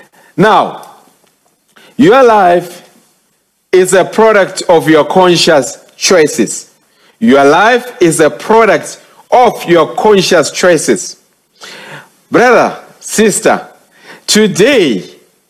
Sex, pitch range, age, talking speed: male, 155-210 Hz, 50-69, 85 wpm